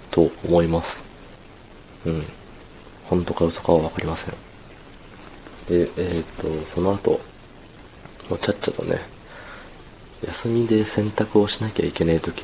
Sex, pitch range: male, 80-100 Hz